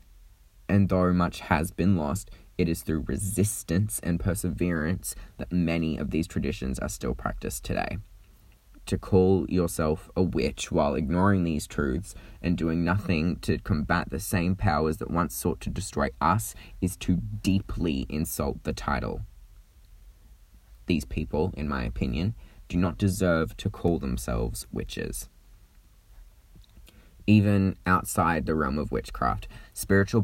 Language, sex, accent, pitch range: English, male, Australian, 80-95 Hz